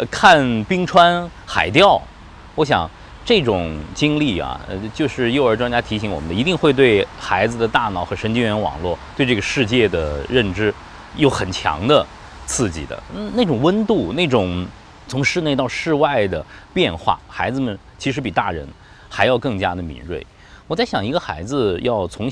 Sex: male